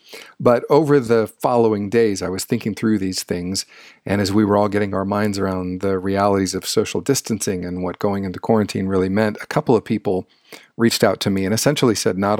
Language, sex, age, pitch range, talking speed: English, male, 40-59, 95-115 Hz, 215 wpm